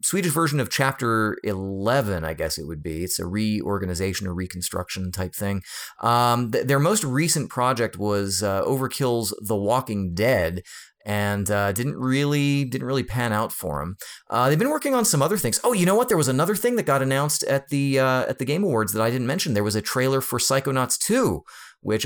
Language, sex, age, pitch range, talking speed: English, male, 30-49, 105-135 Hz, 210 wpm